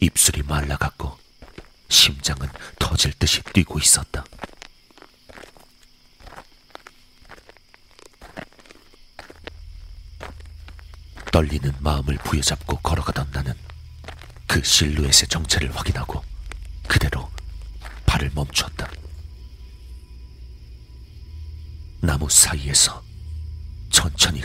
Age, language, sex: 40-59, Korean, male